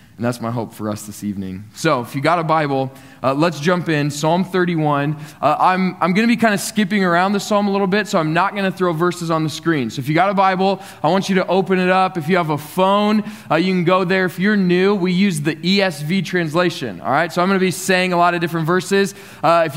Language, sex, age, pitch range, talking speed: English, male, 20-39, 150-185 Hz, 275 wpm